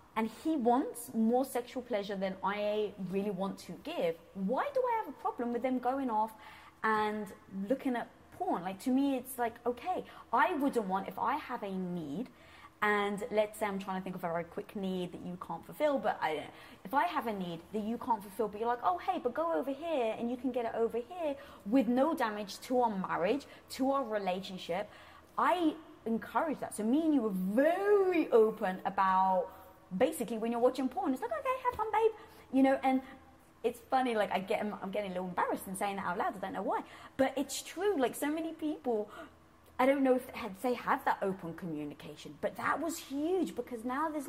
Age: 20-39